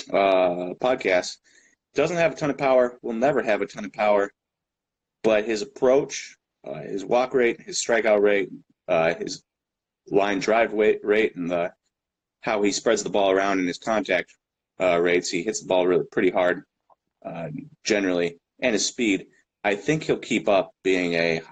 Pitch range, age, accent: 90-105 Hz, 30-49, American